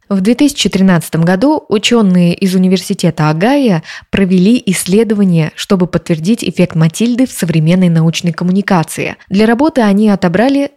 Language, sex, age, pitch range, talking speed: Russian, female, 20-39, 170-225 Hz, 115 wpm